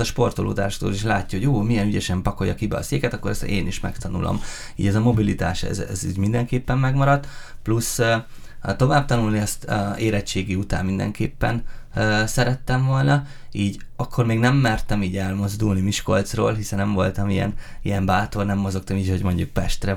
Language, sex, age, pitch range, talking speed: Hungarian, male, 20-39, 95-115 Hz, 165 wpm